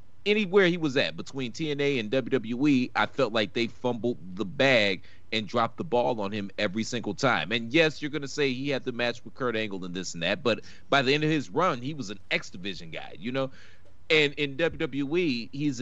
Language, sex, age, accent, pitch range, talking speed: English, male, 30-49, American, 100-135 Hz, 230 wpm